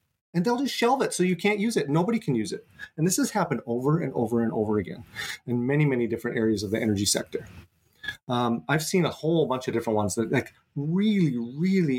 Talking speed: 230 wpm